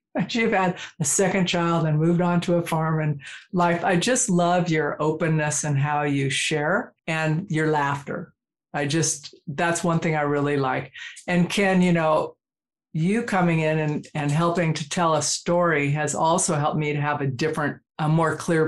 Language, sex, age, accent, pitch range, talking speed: English, female, 50-69, American, 150-175 Hz, 185 wpm